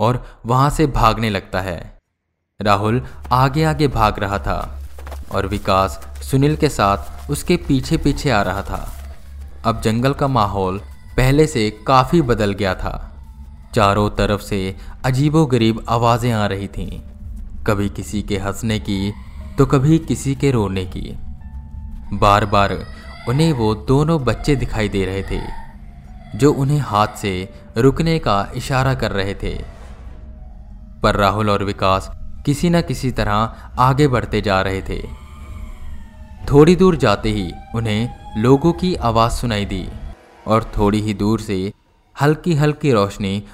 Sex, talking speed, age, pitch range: male, 140 wpm, 20-39, 95-125 Hz